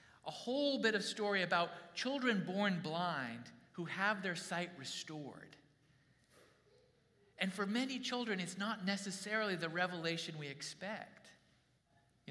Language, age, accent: English, 40-59, American